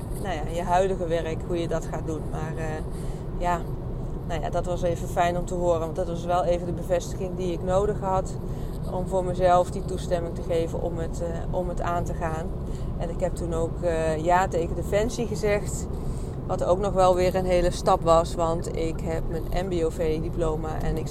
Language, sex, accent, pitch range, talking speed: Dutch, female, Dutch, 165-185 Hz, 210 wpm